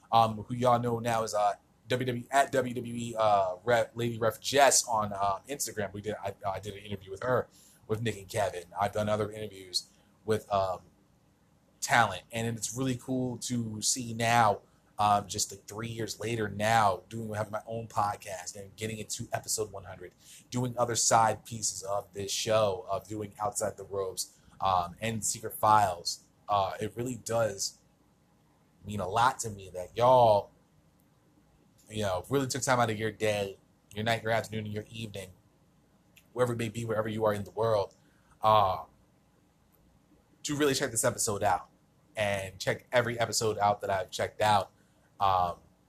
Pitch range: 105-120 Hz